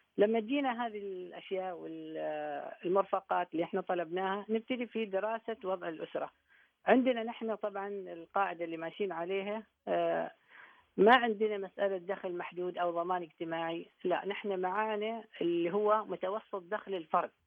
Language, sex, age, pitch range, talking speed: Arabic, female, 40-59, 180-210 Hz, 125 wpm